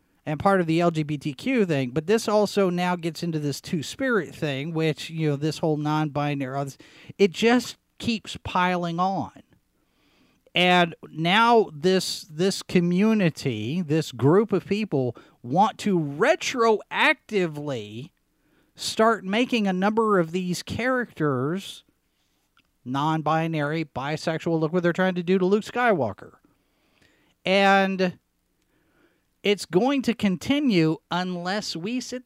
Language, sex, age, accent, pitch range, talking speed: English, male, 40-59, American, 155-205 Hz, 120 wpm